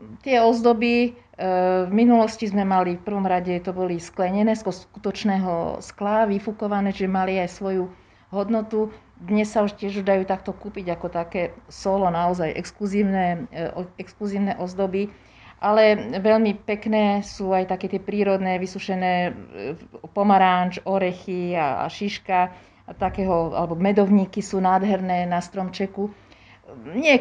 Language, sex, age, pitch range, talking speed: Slovak, female, 40-59, 185-215 Hz, 125 wpm